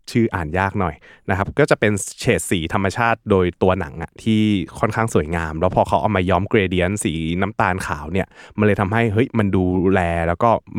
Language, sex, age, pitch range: Thai, male, 20-39, 85-110 Hz